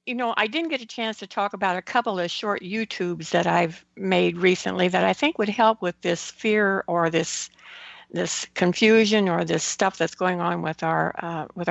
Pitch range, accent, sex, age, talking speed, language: 175-220 Hz, American, female, 60-79, 210 wpm, English